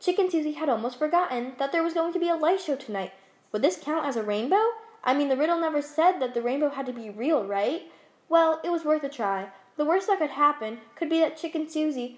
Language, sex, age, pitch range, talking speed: English, female, 10-29, 240-315 Hz, 250 wpm